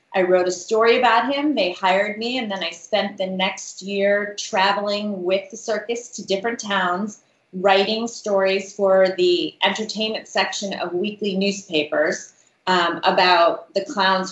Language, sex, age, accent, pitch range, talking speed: English, female, 30-49, American, 180-210 Hz, 150 wpm